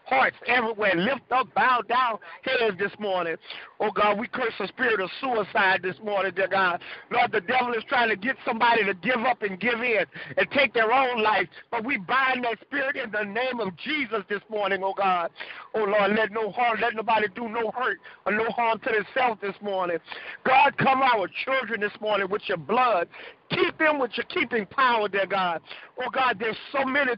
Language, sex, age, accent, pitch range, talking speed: English, male, 50-69, American, 210-260 Hz, 200 wpm